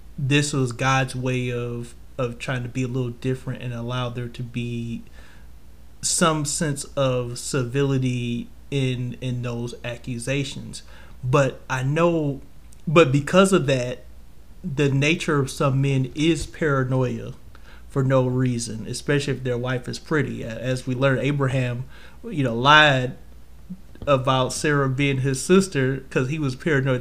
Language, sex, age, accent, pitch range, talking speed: English, male, 30-49, American, 120-140 Hz, 140 wpm